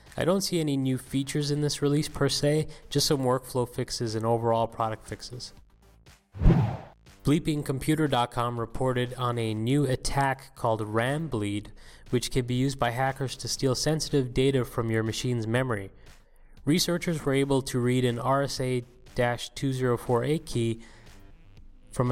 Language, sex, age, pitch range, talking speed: English, male, 20-39, 115-135 Hz, 135 wpm